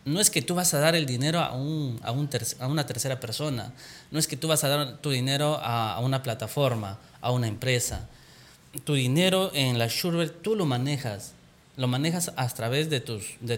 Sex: male